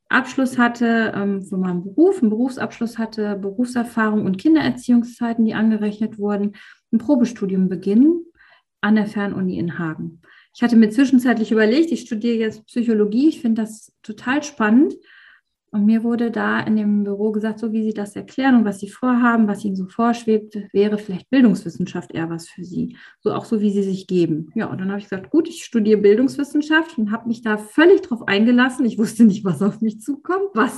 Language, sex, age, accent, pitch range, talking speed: German, female, 30-49, German, 200-255 Hz, 190 wpm